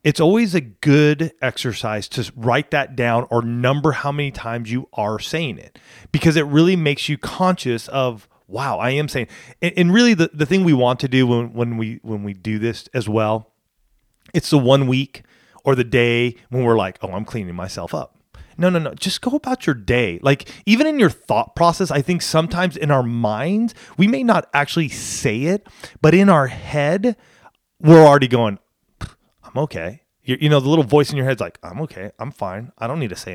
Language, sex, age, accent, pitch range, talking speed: English, male, 30-49, American, 120-160 Hz, 210 wpm